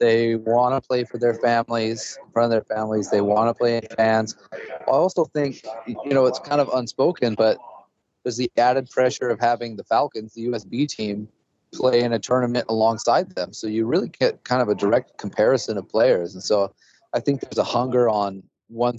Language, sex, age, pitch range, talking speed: English, male, 30-49, 110-130 Hz, 205 wpm